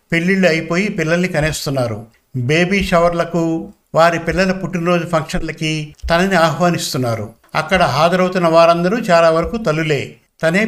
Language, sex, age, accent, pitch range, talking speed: Telugu, male, 60-79, native, 150-180 Hz, 100 wpm